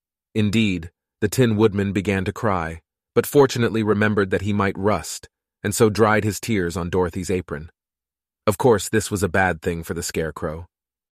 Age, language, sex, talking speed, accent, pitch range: 30-49, Italian, male, 170 wpm, American, 95-120 Hz